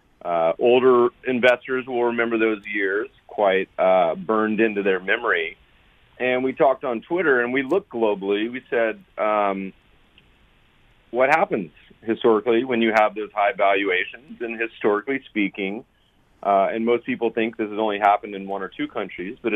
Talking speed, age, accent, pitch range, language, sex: 160 wpm, 40-59, American, 100-125 Hz, English, male